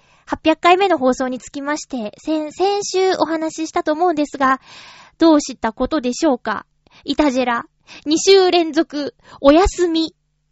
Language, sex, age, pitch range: Japanese, female, 20-39, 230-350 Hz